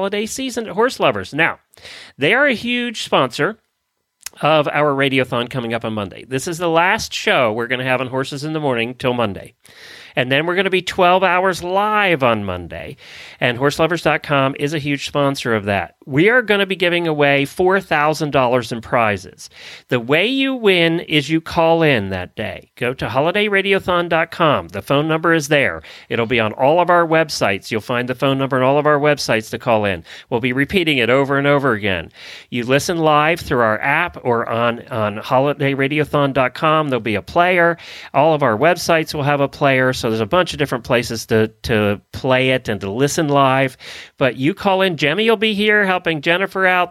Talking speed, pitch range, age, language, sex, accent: 200 wpm, 125-175 Hz, 40-59, English, male, American